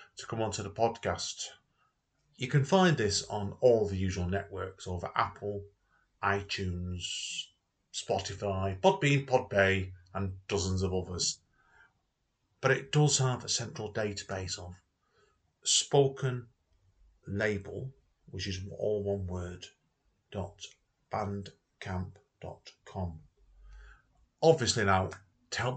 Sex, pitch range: male, 95-120 Hz